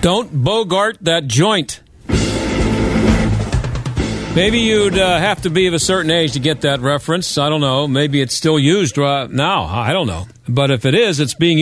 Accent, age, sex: American, 50-69, male